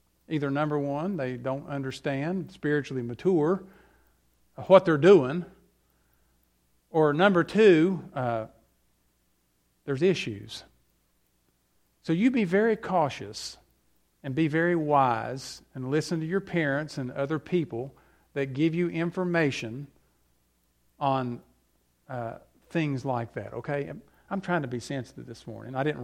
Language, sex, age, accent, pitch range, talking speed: English, male, 50-69, American, 120-180 Hz, 120 wpm